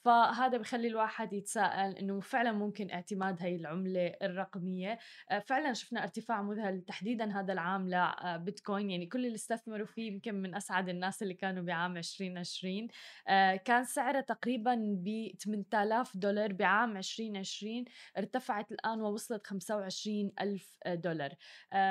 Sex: female